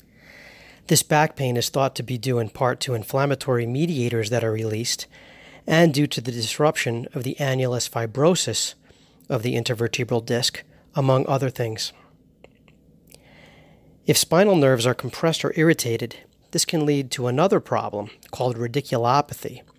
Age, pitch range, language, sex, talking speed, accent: 40-59, 115-145 Hz, English, male, 145 wpm, American